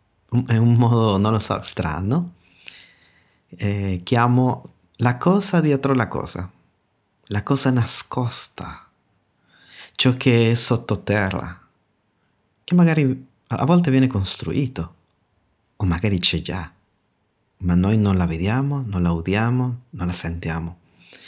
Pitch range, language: 95-130 Hz, Italian